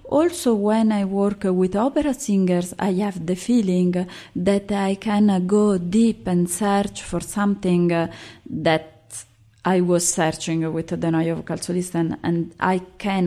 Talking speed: 145 wpm